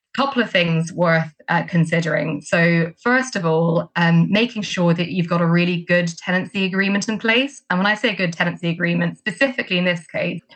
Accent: British